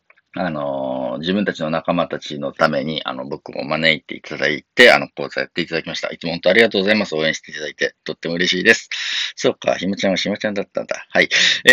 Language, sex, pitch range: Japanese, male, 90-145 Hz